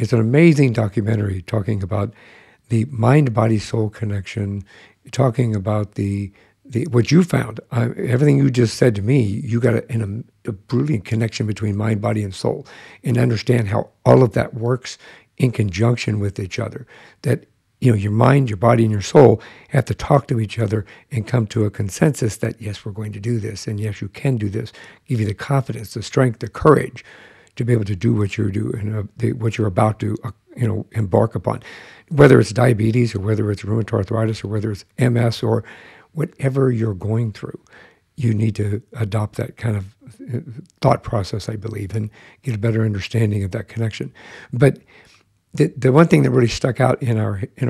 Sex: male